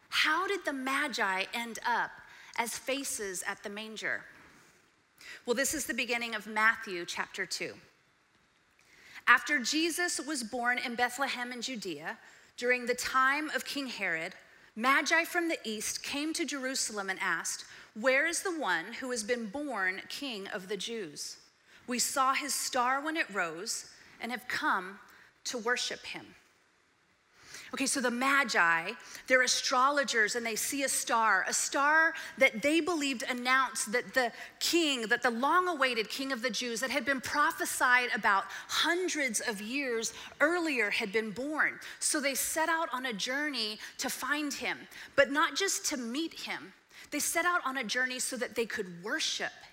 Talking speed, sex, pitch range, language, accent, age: 160 wpm, female, 230-290 Hz, English, American, 30-49